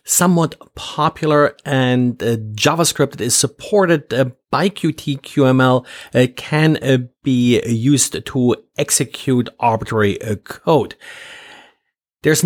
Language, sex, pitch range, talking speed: English, male, 120-150 Hz, 105 wpm